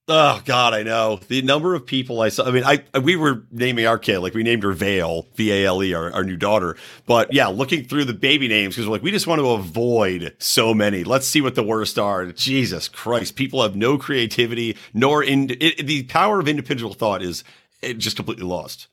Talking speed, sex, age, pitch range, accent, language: 225 wpm, male, 40-59, 105-135 Hz, American, English